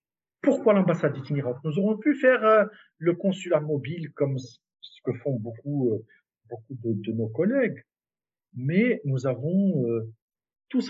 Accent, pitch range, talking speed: French, 120-180 Hz, 130 wpm